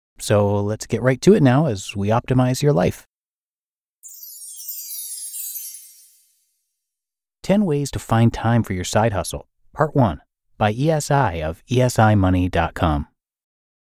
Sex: male